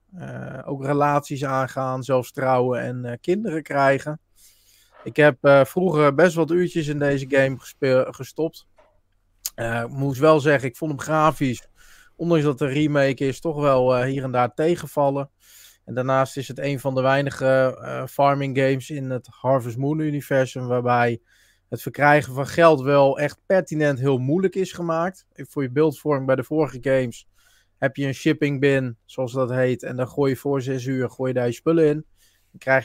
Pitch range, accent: 130-145 Hz, Dutch